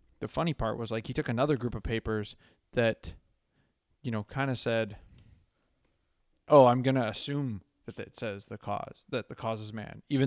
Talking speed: 195 wpm